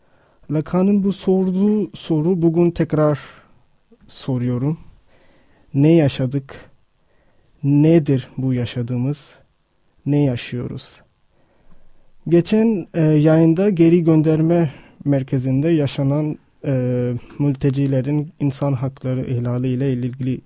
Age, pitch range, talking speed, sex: 30-49, 130-160 Hz, 75 wpm, male